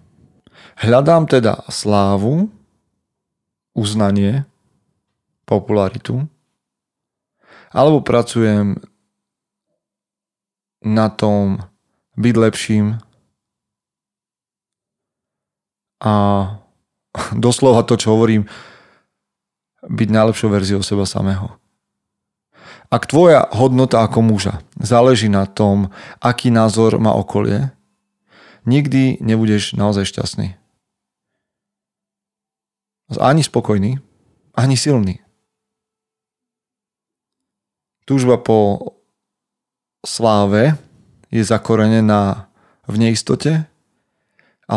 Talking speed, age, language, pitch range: 65 wpm, 30-49, Slovak, 105-125 Hz